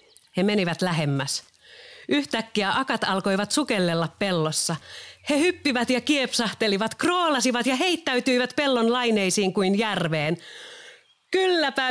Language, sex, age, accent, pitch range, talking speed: Finnish, female, 40-59, native, 165-245 Hz, 100 wpm